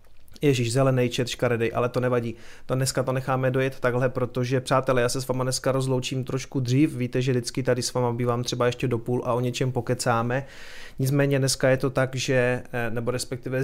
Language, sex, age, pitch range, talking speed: Czech, male, 30-49, 125-140 Hz, 200 wpm